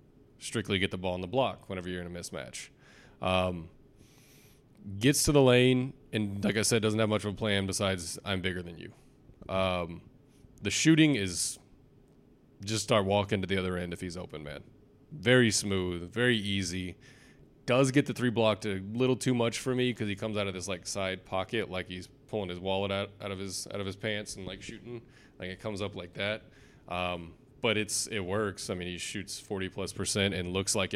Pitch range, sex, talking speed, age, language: 95-115 Hz, male, 205 wpm, 20-39, English